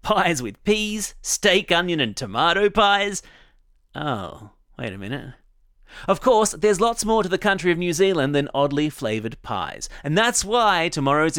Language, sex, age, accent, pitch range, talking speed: English, male, 30-49, Australian, 135-200 Hz, 165 wpm